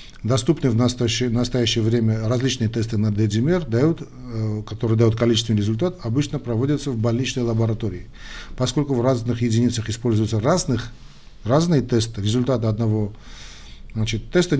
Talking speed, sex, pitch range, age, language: 120 wpm, male, 110-130 Hz, 50-69, Russian